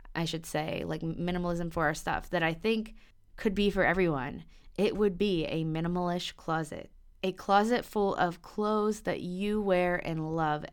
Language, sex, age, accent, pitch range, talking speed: English, female, 20-39, American, 170-215 Hz, 175 wpm